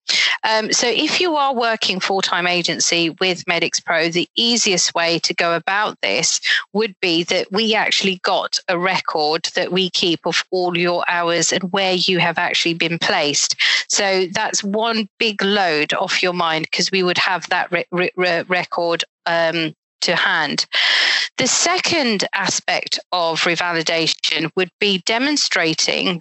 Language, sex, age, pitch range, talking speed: English, female, 40-59, 170-220 Hz, 145 wpm